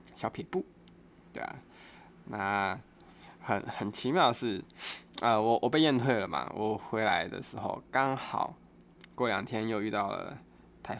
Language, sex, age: Chinese, male, 20-39